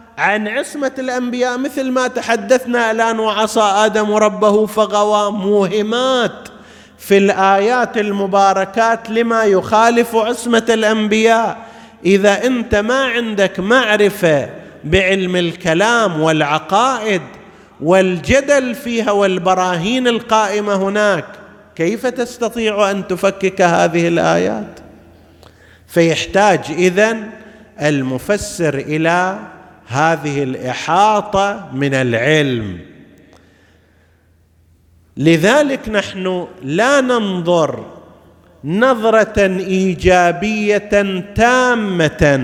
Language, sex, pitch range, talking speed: Arabic, male, 170-225 Hz, 75 wpm